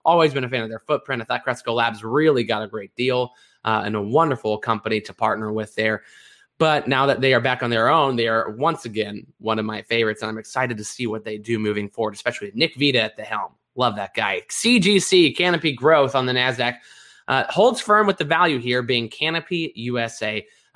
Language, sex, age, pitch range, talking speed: English, male, 20-39, 115-160 Hz, 225 wpm